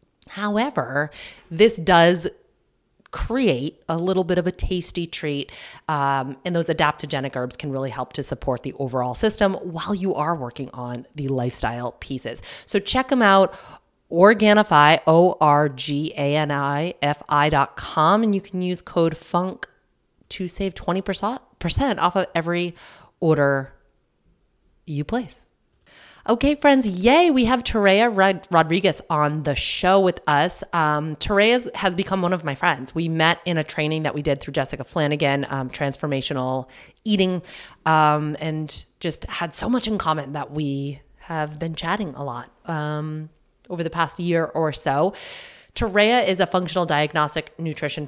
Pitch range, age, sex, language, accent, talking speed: 145-190 Hz, 30-49, female, English, American, 145 wpm